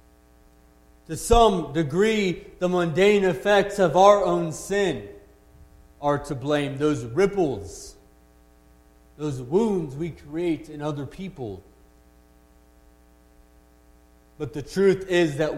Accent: American